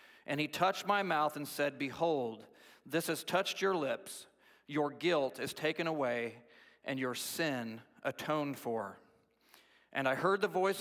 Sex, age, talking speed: male, 40-59, 155 wpm